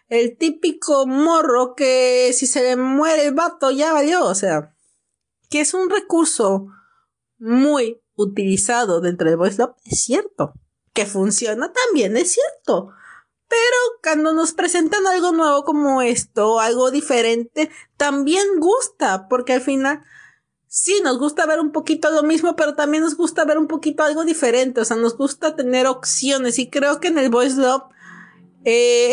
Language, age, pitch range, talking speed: Spanish, 40-59, 245-315 Hz, 160 wpm